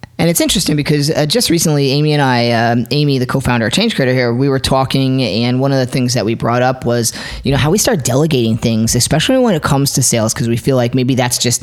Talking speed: 265 wpm